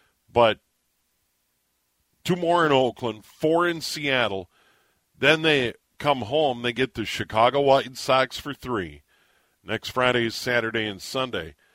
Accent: American